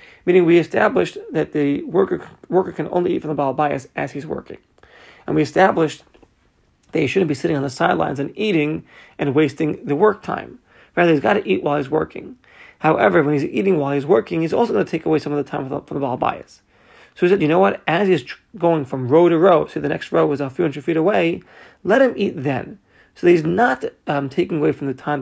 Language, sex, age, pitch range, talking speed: English, male, 30-49, 145-175 Hz, 240 wpm